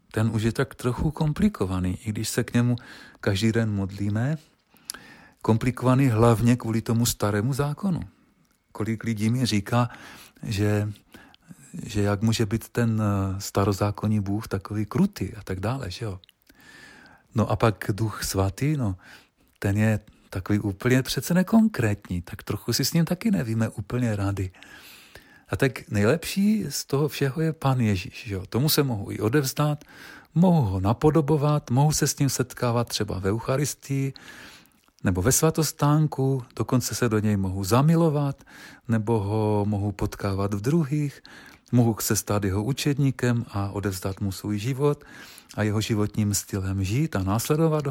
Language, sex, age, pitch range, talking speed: Czech, male, 40-59, 105-140 Hz, 150 wpm